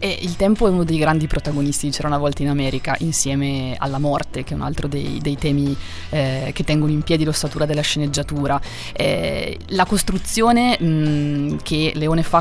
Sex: female